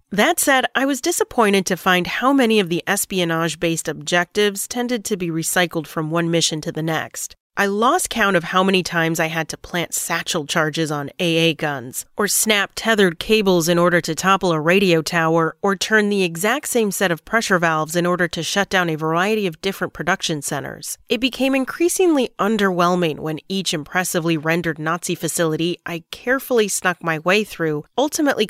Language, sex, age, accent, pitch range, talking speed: English, female, 30-49, American, 165-210 Hz, 185 wpm